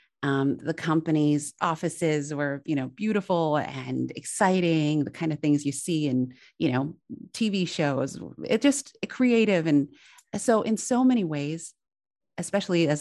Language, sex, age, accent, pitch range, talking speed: English, female, 30-49, American, 145-195 Hz, 150 wpm